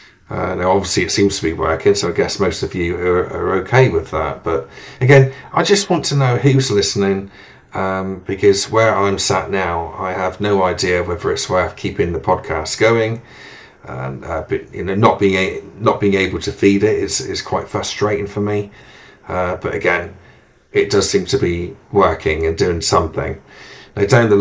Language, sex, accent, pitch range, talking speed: English, male, British, 90-115 Hz, 195 wpm